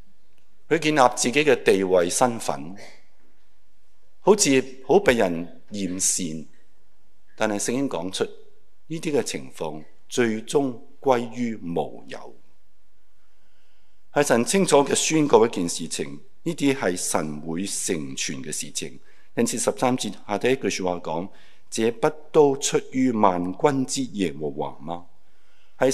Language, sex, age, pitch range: Chinese, male, 50-69, 90-140 Hz